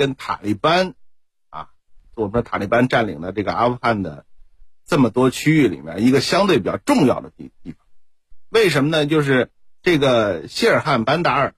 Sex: male